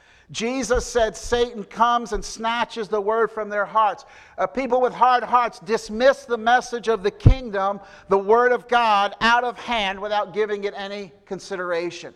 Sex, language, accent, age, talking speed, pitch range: male, English, American, 60-79, 170 wpm, 165-210 Hz